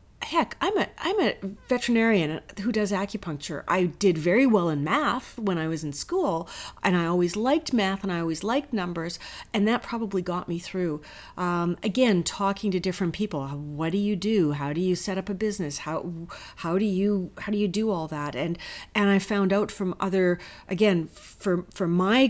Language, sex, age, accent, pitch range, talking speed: English, female, 40-59, American, 170-205 Hz, 200 wpm